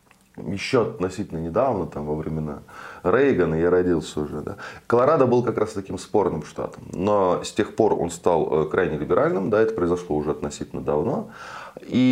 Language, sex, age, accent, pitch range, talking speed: Russian, male, 20-39, native, 85-110 Hz, 165 wpm